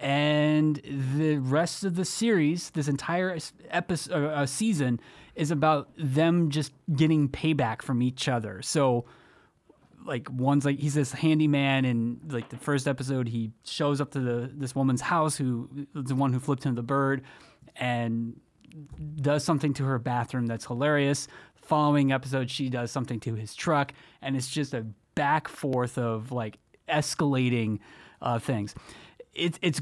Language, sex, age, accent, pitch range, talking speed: English, male, 30-49, American, 125-155 Hz, 155 wpm